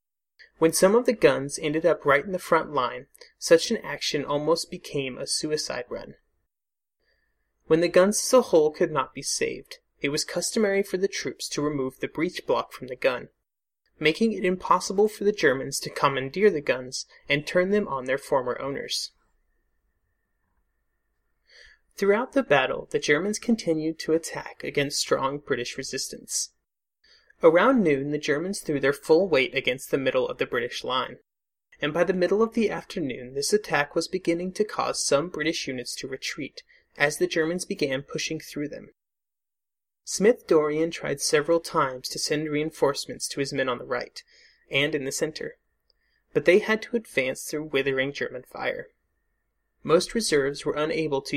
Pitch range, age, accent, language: 145-225 Hz, 30-49, American, English